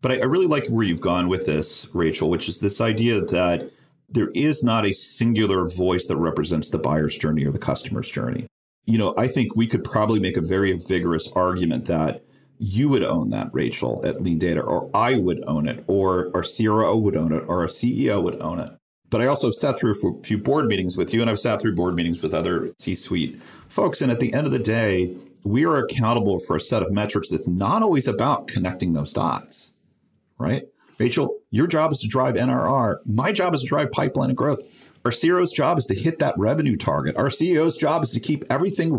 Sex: male